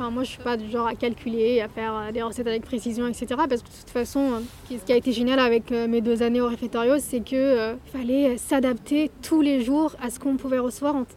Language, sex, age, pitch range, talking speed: French, female, 20-39, 235-270 Hz, 245 wpm